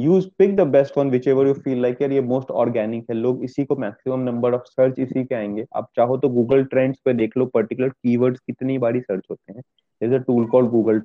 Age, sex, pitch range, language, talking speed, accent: 20-39, male, 120-145 Hz, Hindi, 250 wpm, native